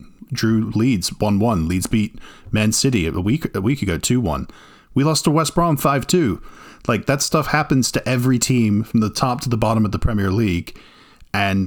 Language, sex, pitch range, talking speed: English, male, 95-120 Hz, 190 wpm